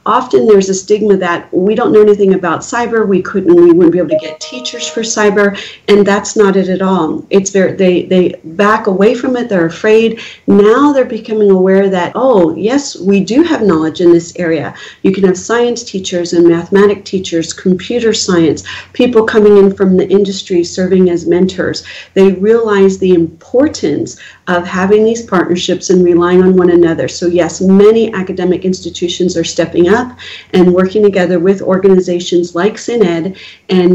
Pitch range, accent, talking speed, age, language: 175-205 Hz, American, 175 wpm, 40-59, English